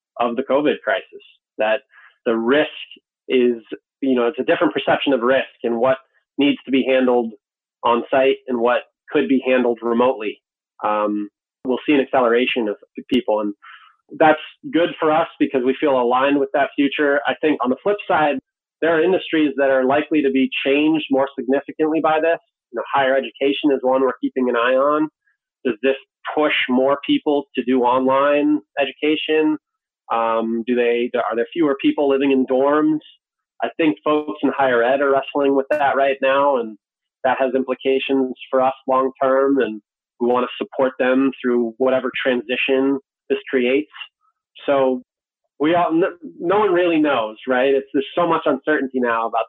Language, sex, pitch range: English, male, 125-150 Hz